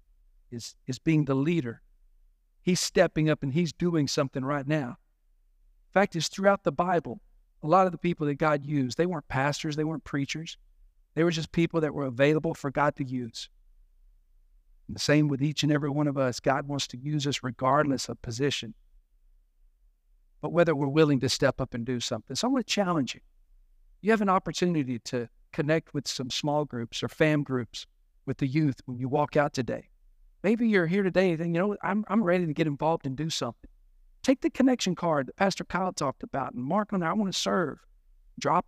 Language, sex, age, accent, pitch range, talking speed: English, male, 50-69, American, 125-170 Hz, 205 wpm